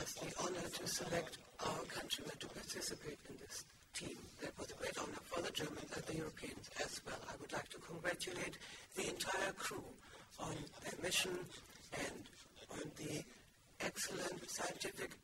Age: 60-79